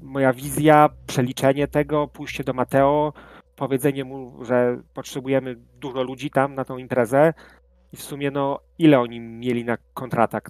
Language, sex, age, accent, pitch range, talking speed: Polish, male, 30-49, native, 115-135 Hz, 150 wpm